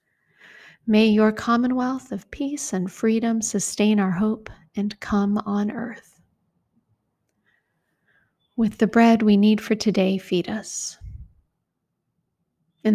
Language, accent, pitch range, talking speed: English, American, 200-225 Hz, 110 wpm